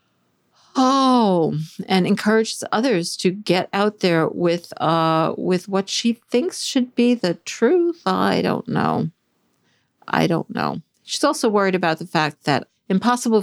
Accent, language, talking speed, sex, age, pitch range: American, English, 145 wpm, female, 50-69, 175-240 Hz